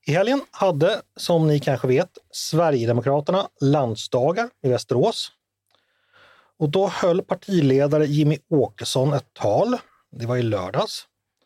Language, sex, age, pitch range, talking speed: Swedish, male, 30-49, 130-185 Hz, 120 wpm